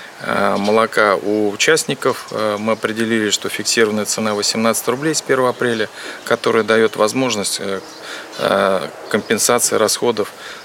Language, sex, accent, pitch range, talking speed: Russian, male, native, 105-120 Hz, 100 wpm